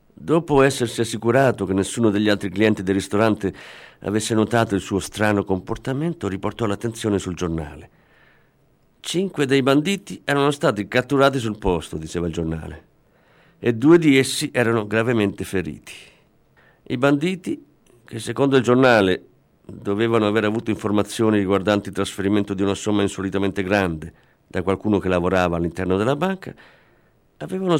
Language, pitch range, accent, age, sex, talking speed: Italian, 95-140 Hz, native, 50-69, male, 140 wpm